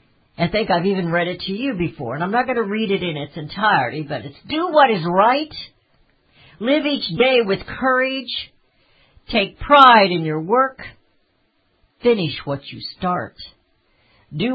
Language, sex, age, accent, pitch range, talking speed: English, female, 60-79, American, 130-205 Hz, 165 wpm